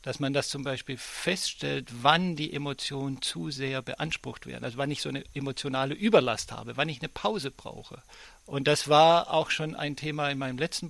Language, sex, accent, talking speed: German, male, German, 200 wpm